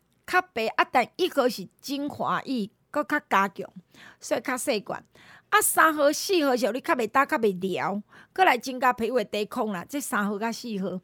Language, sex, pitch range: Chinese, female, 225-325 Hz